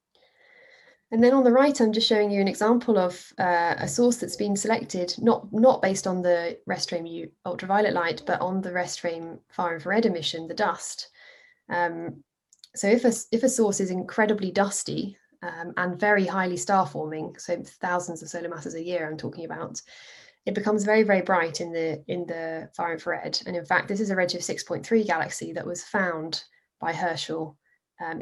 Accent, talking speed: British, 190 wpm